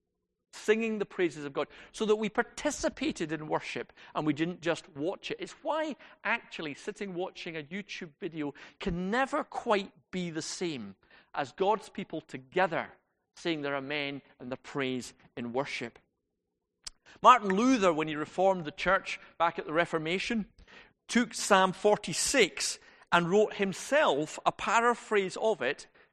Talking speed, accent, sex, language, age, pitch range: 150 wpm, British, male, English, 40-59, 150-205 Hz